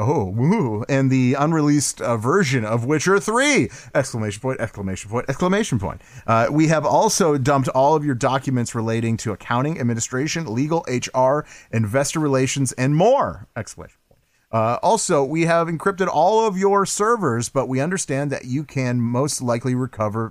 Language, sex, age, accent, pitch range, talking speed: English, male, 30-49, American, 115-160 Hz, 160 wpm